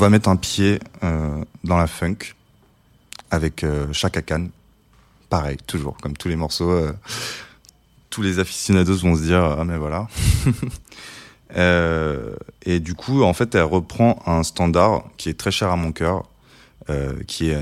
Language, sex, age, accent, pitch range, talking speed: French, male, 20-39, French, 80-95 Hz, 165 wpm